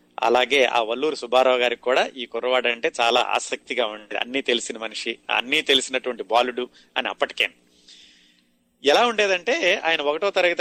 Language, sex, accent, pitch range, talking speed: Telugu, male, native, 110-145 Hz, 135 wpm